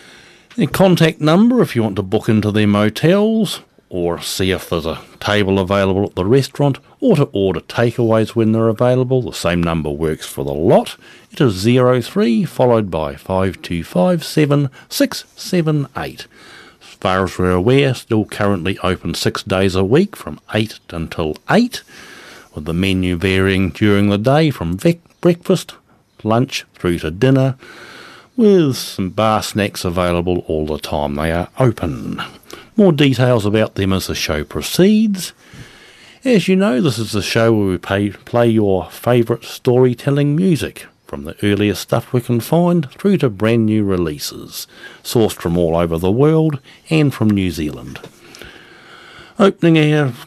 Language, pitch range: English, 95-150 Hz